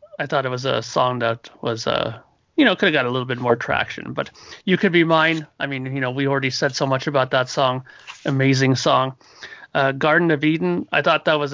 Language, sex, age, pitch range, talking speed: English, male, 30-49, 135-155 Hz, 240 wpm